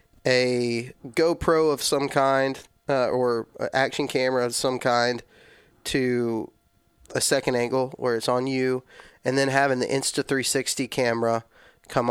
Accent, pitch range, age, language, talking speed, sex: American, 120-135 Hz, 20-39, English, 135 wpm, male